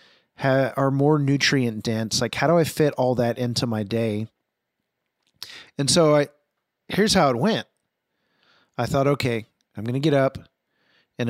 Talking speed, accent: 160 wpm, American